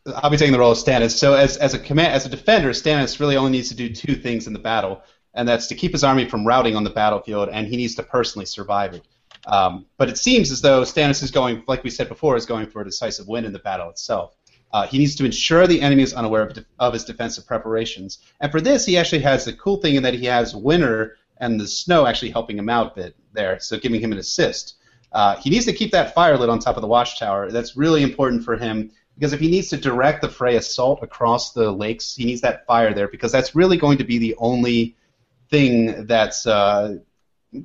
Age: 30-49